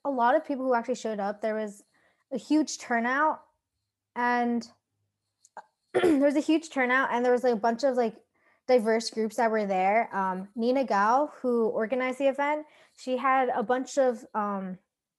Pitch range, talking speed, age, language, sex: 205-250 Hz, 180 wpm, 20-39, English, female